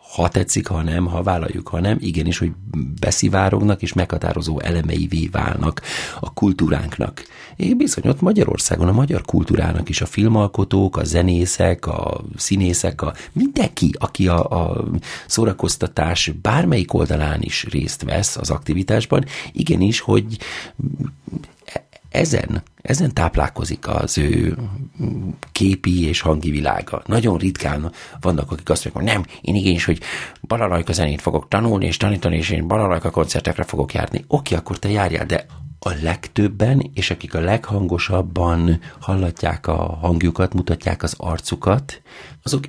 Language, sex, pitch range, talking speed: Hungarian, male, 85-105 Hz, 130 wpm